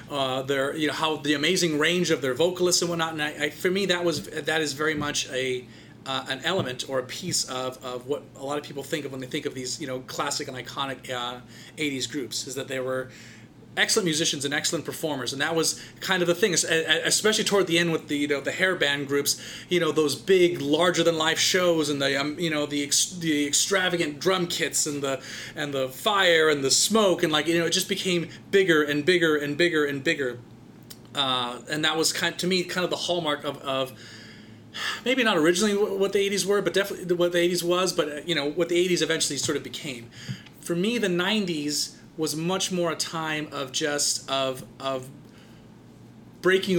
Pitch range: 135-175 Hz